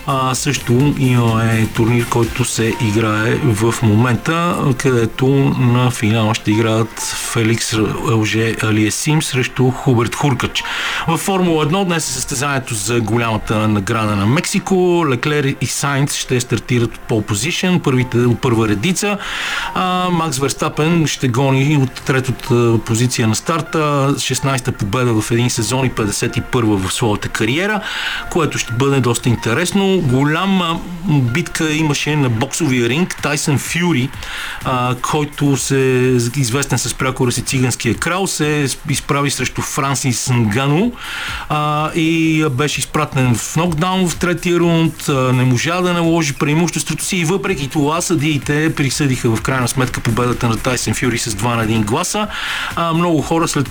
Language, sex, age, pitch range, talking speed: Bulgarian, male, 50-69, 120-155 Hz, 140 wpm